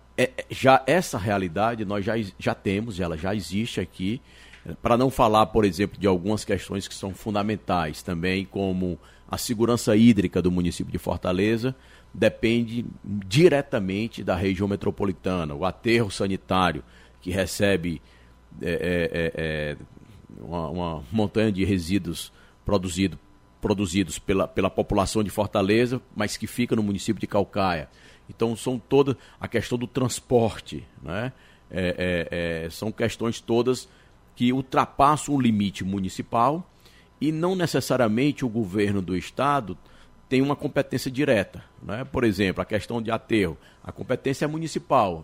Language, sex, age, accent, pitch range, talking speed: Portuguese, male, 50-69, Brazilian, 95-120 Hz, 140 wpm